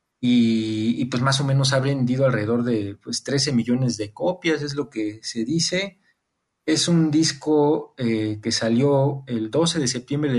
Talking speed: 175 wpm